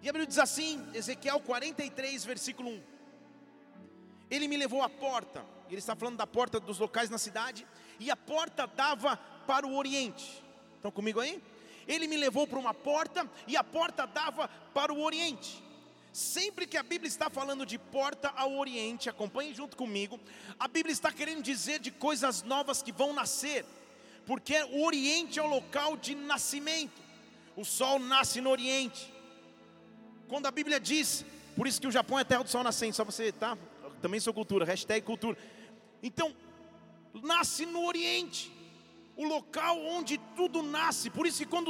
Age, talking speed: 40-59, 170 wpm